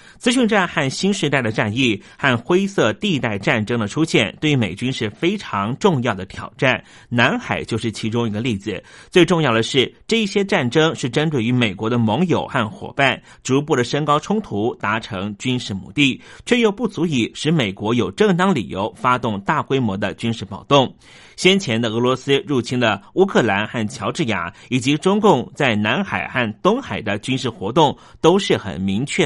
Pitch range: 110-160 Hz